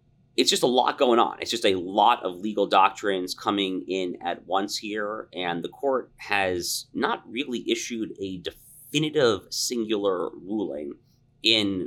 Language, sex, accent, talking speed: English, male, American, 150 wpm